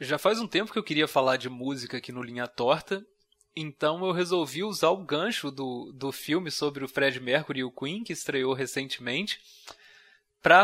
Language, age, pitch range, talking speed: Portuguese, 20-39, 140-190 Hz, 190 wpm